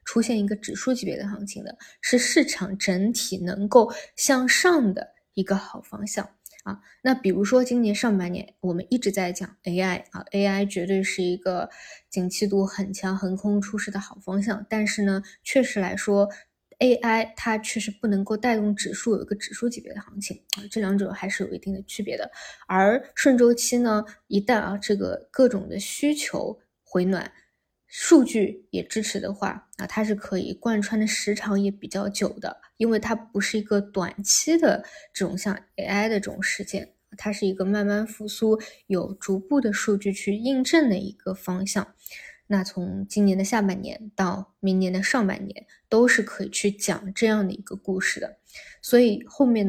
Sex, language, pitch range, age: female, Chinese, 195-225 Hz, 20-39